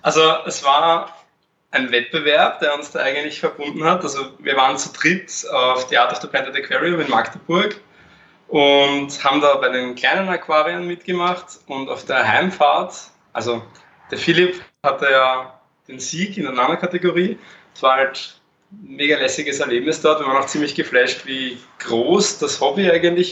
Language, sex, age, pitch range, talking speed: German, male, 20-39, 130-165 Hz, 170 wpm